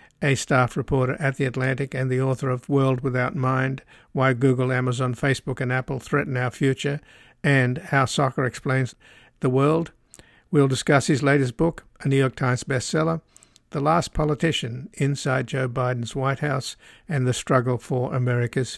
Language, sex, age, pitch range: English, male, 60-79, 110-130 Hz